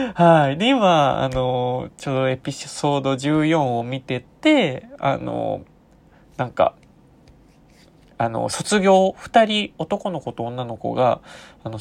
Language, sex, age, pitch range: Japanese, male, 20-39, 120-175 Hz